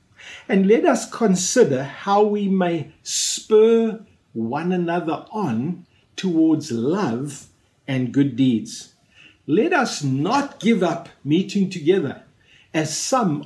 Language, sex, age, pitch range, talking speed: English, male, 50-69, 155-210 Hz, 110 wpm